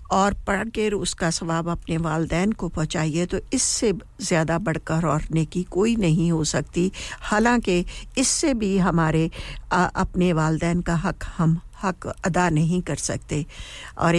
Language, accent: English, Indian